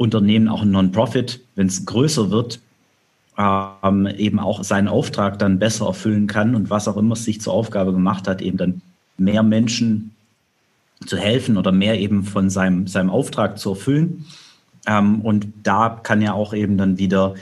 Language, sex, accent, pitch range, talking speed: German, male, German, 100-110 Hz, 175 wpm